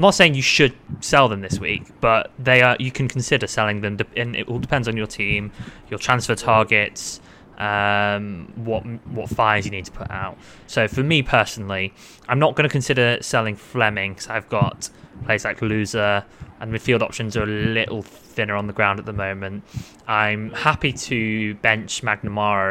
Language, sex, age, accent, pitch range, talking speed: English, male, 20-39, British, 100-120 Hz, 185 wpm